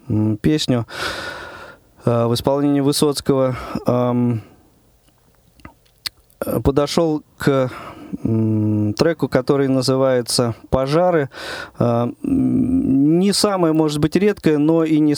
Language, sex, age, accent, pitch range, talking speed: Russian, male, 20-39, native, 115-145 Hz, 70 wpm